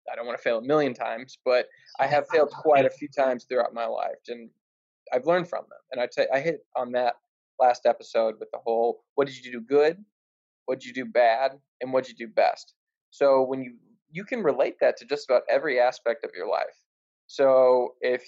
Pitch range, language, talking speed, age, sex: 120-140 Hz, English, 230 wpm, 20-39, male